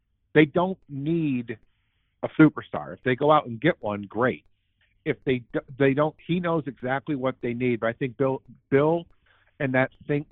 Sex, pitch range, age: male, 105-140 Hz, 50-69